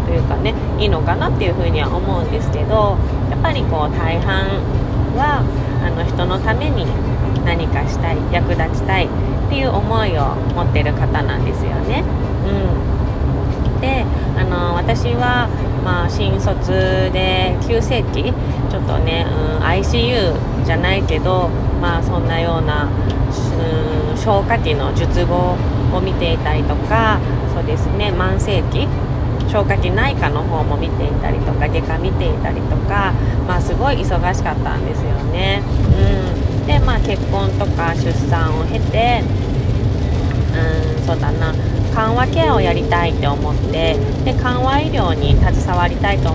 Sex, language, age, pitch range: female, Japanese, 20-39, 95-120 Hz